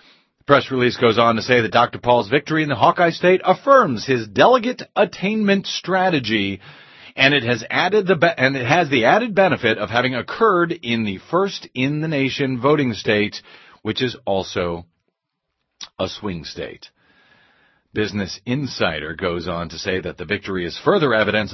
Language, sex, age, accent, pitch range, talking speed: English, male, 40-59, American, 105-155 Hz, 165 wpm